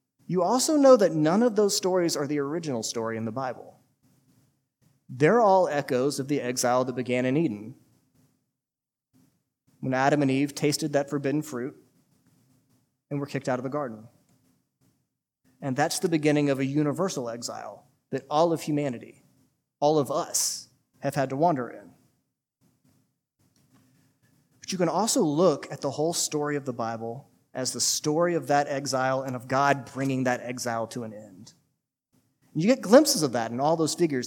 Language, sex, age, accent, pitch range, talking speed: English, male, 30-49, American, 130-155 Hz, 170 wpm